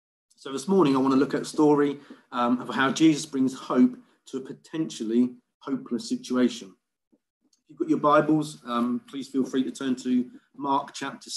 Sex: male